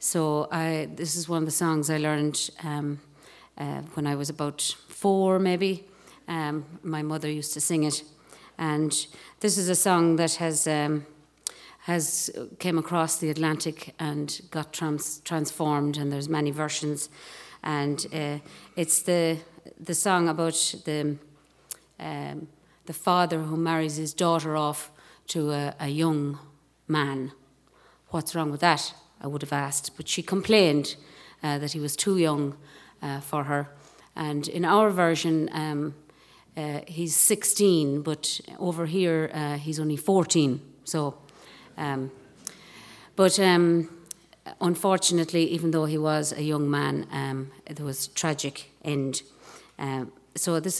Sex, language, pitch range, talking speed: female, English, 150-165 Hz, 145 wpm